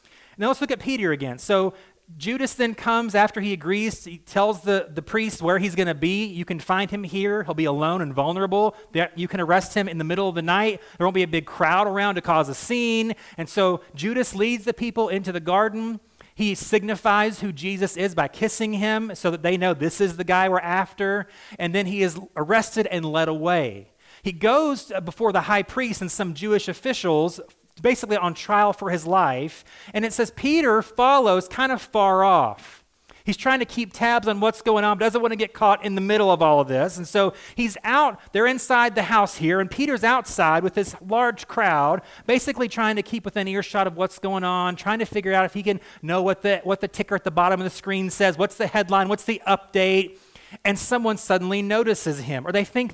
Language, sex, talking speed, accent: English, male, 220 wpm, American